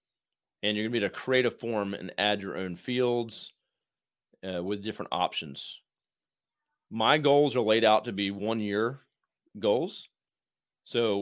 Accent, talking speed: American, 155 wpm